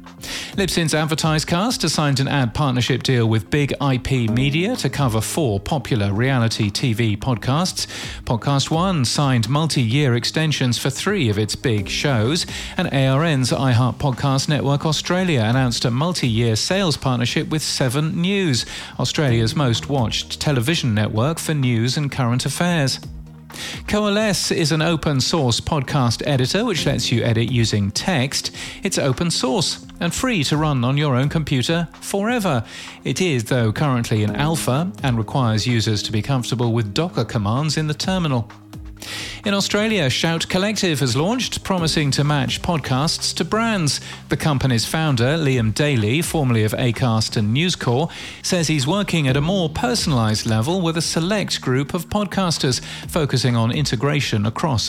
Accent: British